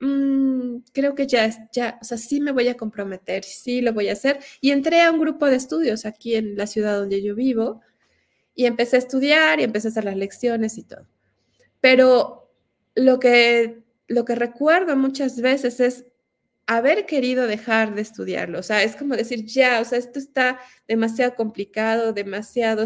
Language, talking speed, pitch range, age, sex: Spanish, 180 wpm, 220-275 Hz, 30-49, female